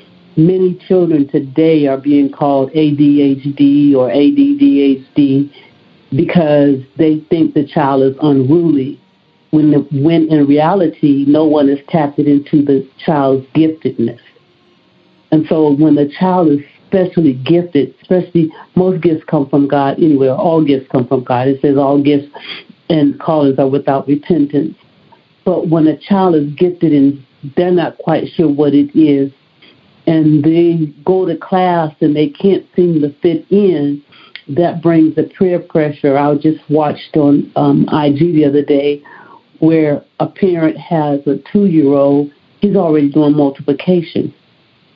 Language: English